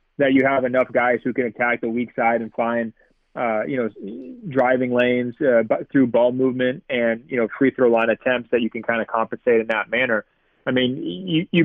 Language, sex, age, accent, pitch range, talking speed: English, male, 20-39, American, 115-130 Hz, 215 wpm